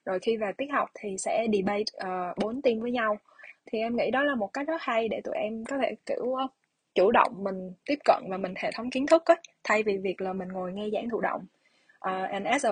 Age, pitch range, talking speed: 20-39, 190-235 Hz, 260 wpm